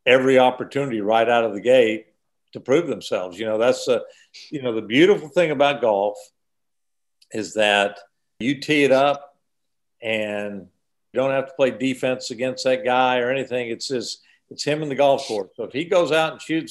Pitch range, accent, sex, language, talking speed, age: 115-135 Hz, American, male, English, 195 wpm, 50-69